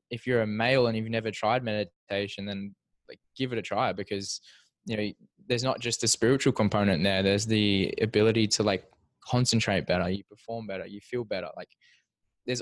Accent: Australian